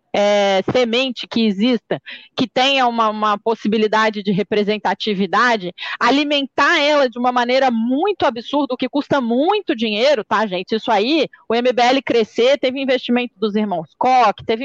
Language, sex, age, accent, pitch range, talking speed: Portuguese, female, 30-49, Brazilian, 230-295 Hz, 145 wpm